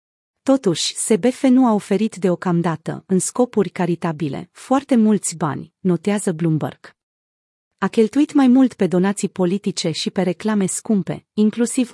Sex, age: female, 30-49